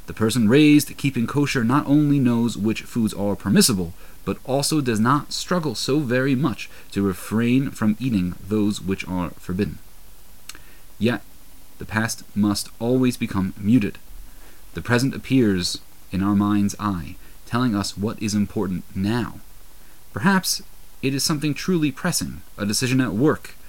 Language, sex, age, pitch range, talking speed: English, male, 30-49, 100-125 Hz, 145 wpm